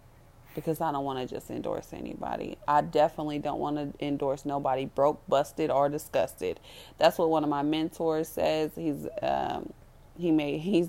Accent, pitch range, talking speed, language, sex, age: American, 145-185 Hz, 170 wpm, English, female, 30-49